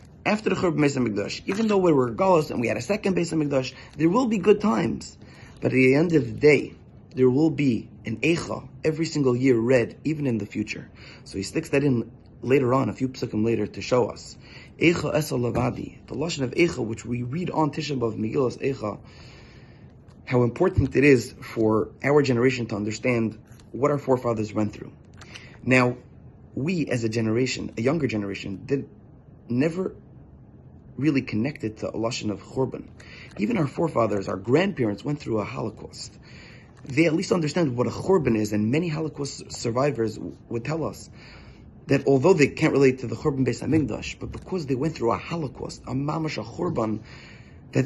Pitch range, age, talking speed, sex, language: 115-150 Hz, 30-49, 180 wpm, male, English